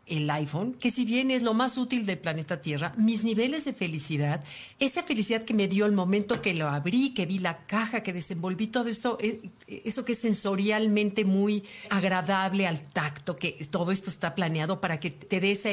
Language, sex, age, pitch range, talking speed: Spanish, female, 50-69, 175-230 Hz, 200 wpm